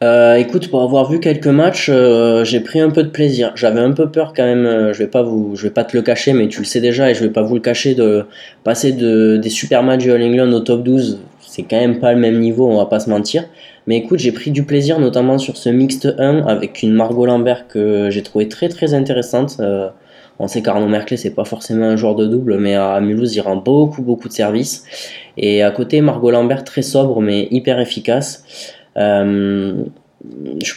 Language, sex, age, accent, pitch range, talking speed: French, male, 20-39, French, 110-130 Hz, 235 wpm